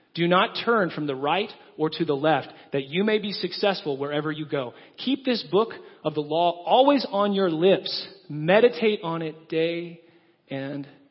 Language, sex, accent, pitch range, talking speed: English, male, American, 150-195 Hz, 180 wpm